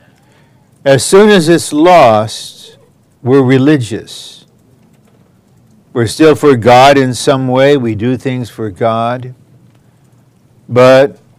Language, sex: English, male